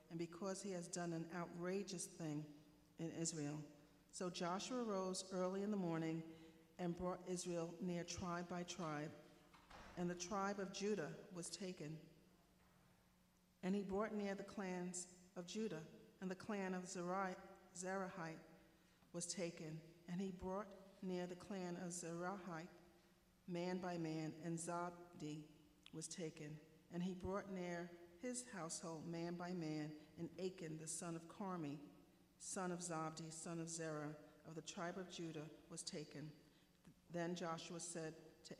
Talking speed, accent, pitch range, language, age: 145 wpm, American, 160-185 Hz, English, 50-69